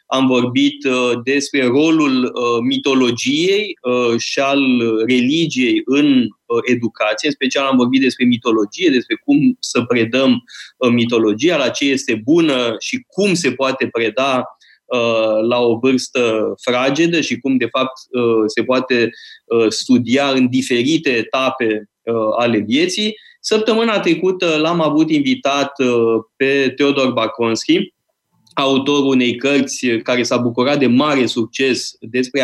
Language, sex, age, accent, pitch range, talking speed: Romanian, male, 20-39, native, 120-155 Hz, 120 wpm